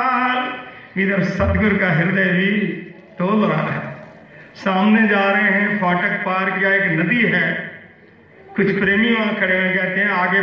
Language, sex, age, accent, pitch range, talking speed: Hindi, male, 50-69, native, 175-205 Hz, 150 wpm